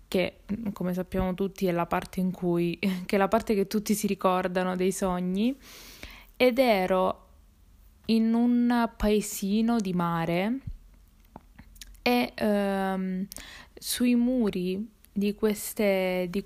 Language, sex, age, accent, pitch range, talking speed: Italian, female, 20-39, native, 185-215 Hz, 120 wpm